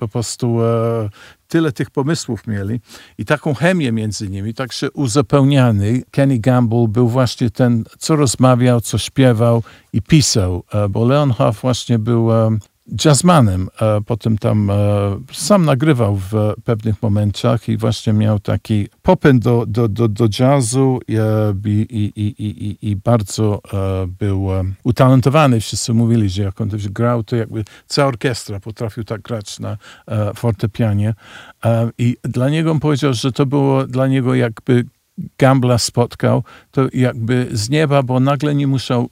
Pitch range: 110-130 Hz